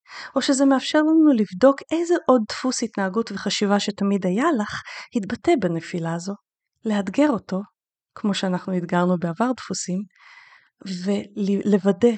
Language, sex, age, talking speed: Hebrew, female, 30-49, 120 wpm